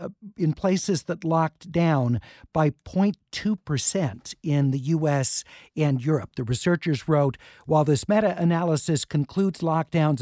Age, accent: 50-69, American